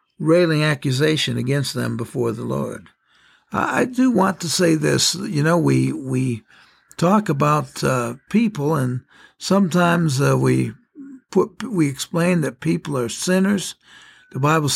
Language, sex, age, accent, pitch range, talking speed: English, male, 60-79, American, 130-160 Hz, 140 wpm